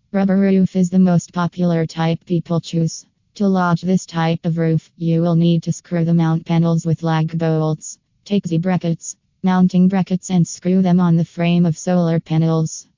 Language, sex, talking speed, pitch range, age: English, female, 180 wpm, 165-180 Hz, 20-39